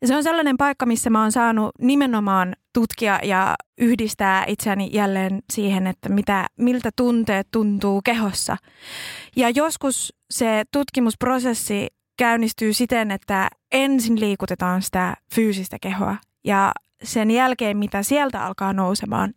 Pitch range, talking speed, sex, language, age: 195-230 Hz, 125 wpm, female, Finnish, 20-39